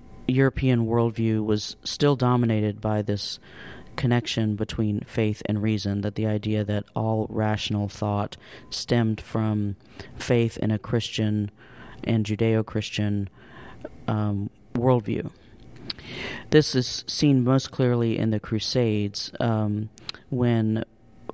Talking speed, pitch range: 110 wpm, 105-120 Hz